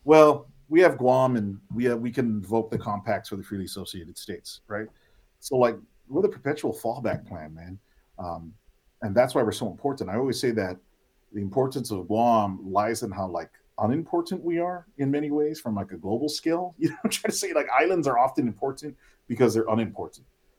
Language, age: English, 40-59